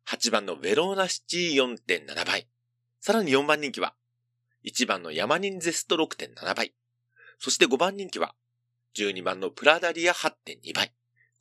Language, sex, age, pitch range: Japanese, male, 40-59, 120-175 Hz